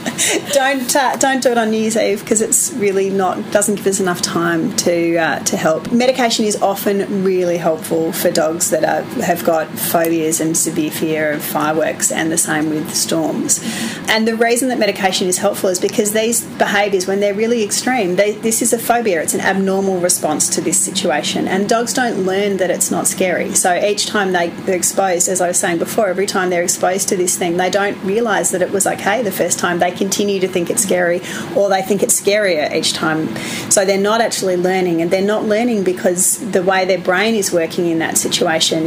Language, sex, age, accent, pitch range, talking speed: English, female, 30-49, Australian, 175-210 Hz, 215 wpm